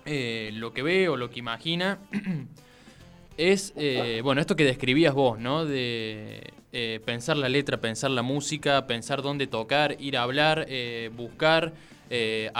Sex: male